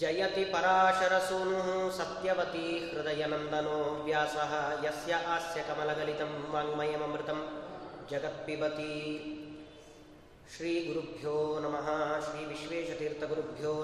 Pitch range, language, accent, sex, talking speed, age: 150-240 Hz, Kannada, native, male, 50 wpm, 30-49